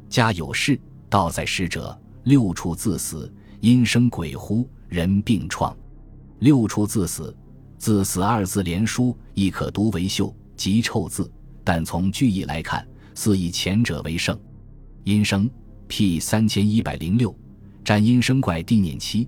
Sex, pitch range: male, 95-115 Hz